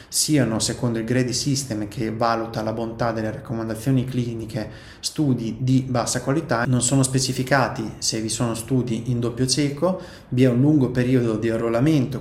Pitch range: 115-130 Hz